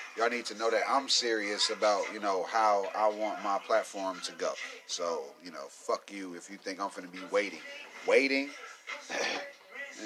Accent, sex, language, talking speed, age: American, male, English, 190 wpm, 30-49